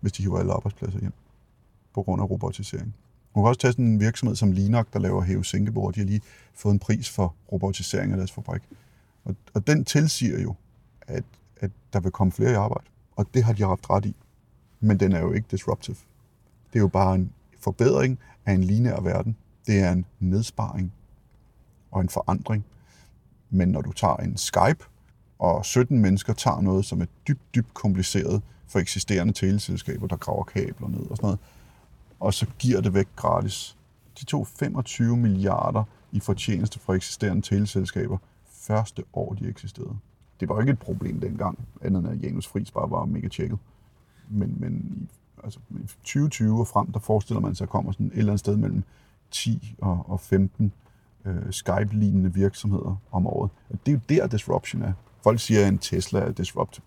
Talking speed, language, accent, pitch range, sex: 190 wpm, Danish, native, 95-120 Hz, male